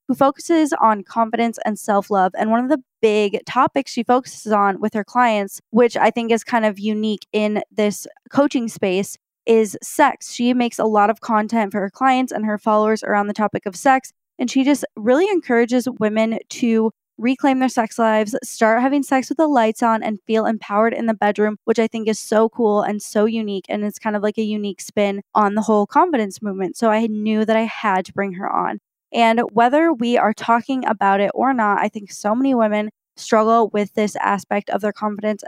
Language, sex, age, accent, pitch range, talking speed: English, female, 20-39, American, 210-240 Hz, 210 wpm